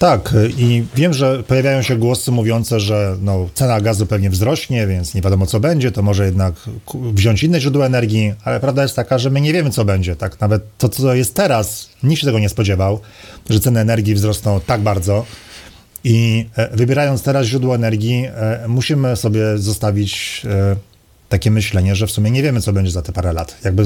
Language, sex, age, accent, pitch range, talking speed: Polish, male, 40-59, native, 100-130 Hz, 190 wpm